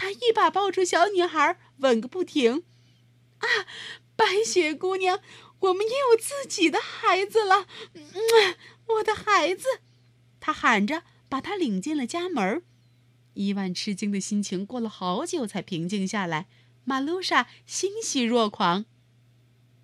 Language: Chinese